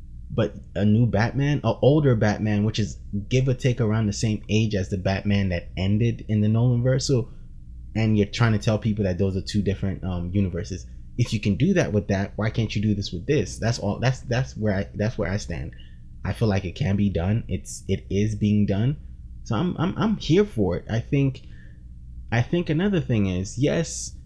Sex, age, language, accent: male, 20-39, English, American